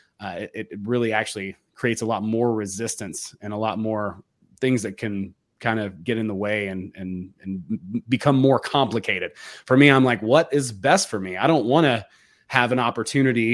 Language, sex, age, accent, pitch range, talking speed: English, male, 20-39, American, 105-125 Hz, 200 wpm